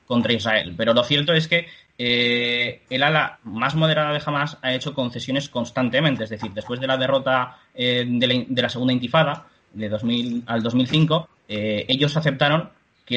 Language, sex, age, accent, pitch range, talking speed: Spanish, male, 20-39, Spanish, 115-145 Hz, 180 wpm